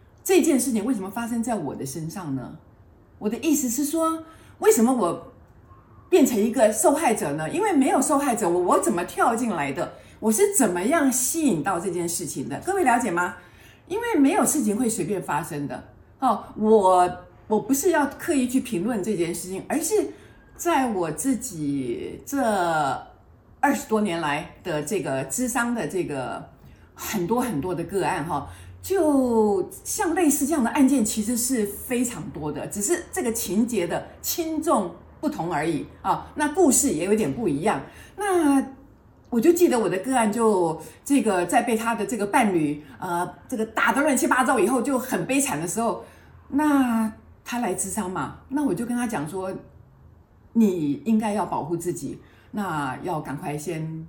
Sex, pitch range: female, 180-285 Hz